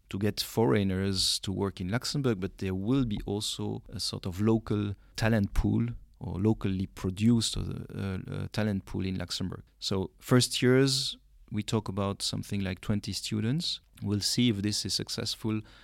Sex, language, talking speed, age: male, English, 165 wpm, 40-59